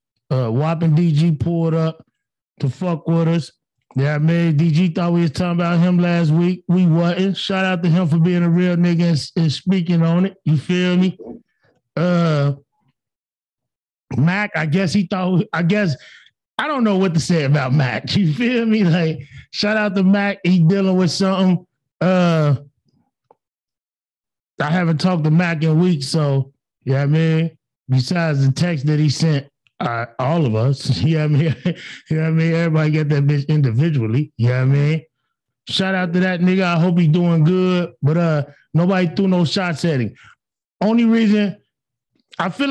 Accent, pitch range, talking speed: American, 145-185 Hz, 190 wpm